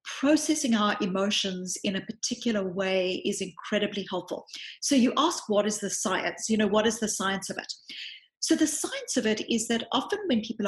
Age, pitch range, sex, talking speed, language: 40-59, 200-250 Hz, female, 195 wpm, English